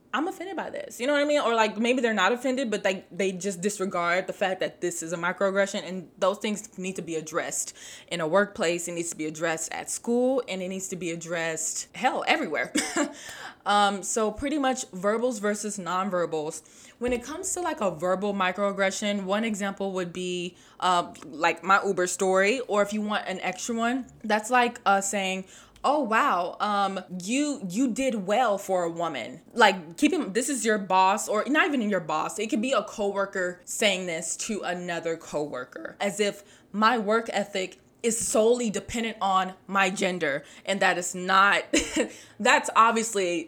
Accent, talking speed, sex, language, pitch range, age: American, 190 wpm, female, English, 185-240 Hz, 20-39